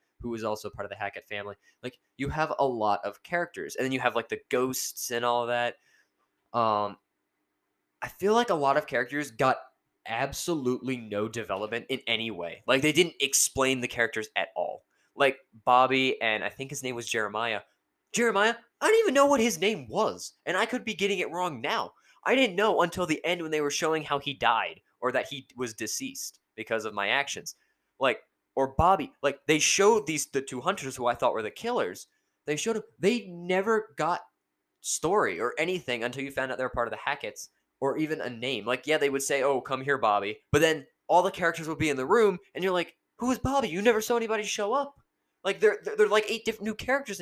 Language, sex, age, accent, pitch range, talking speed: English, male, 20-39, American, 120-195 Hz, 225 wpm